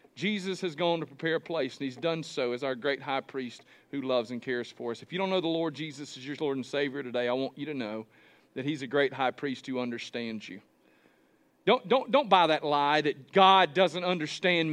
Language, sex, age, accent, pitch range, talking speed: English, male, 40-59, American, 145-200 Hz, 240 wpm